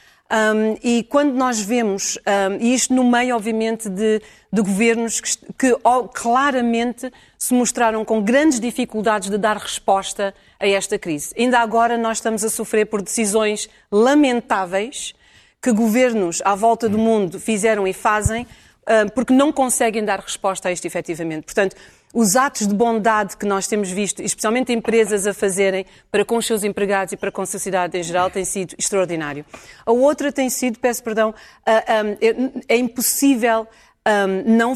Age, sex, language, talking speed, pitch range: 40-59, female, Portuguese, 150 wpm, 200-240 Hz